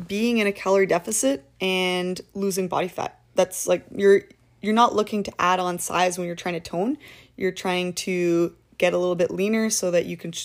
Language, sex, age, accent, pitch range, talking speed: English, female, 20-39, American, 180-220 Hz, 205 wpm